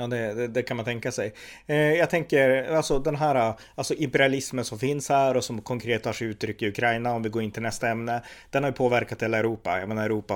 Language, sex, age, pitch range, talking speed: Swedish, male, 30-49, 105-125 Hz, 250 wpm